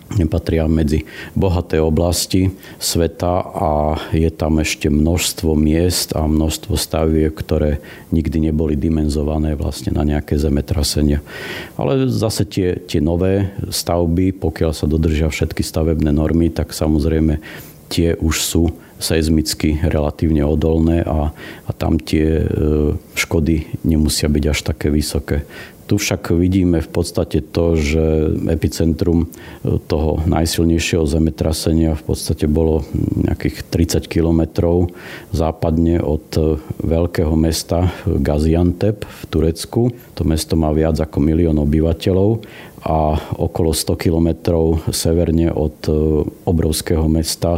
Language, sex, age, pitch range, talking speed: Slovak, male, 50-69, 80-85 Hz, 115 wpm